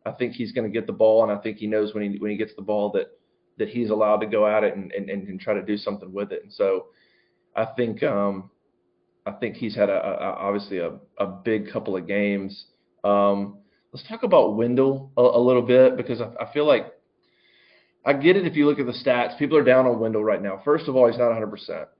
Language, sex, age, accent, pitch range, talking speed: English, male, 30-49, American, 105-125 Hz, 250 wpm